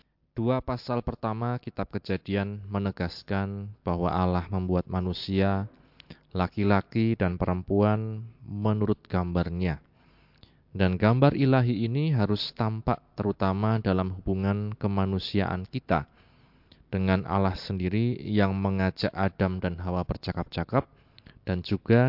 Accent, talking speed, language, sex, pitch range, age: native, 100 wpm, Indonesian, male, 95-115 Hz, 20-39